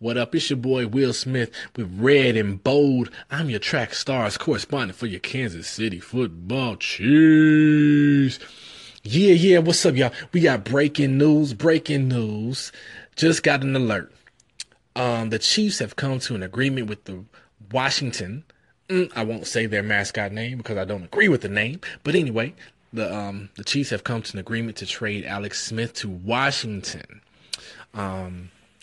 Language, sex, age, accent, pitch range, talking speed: English, male, 20-39, American, 100-135 Hz, 165 wpm